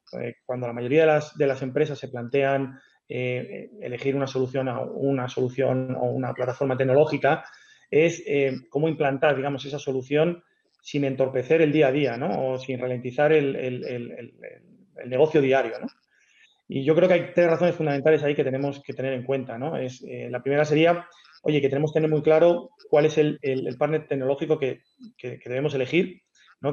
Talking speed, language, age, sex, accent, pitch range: 195 wpm, Spanish, 30-49, male, Spanish, 130-155 Hz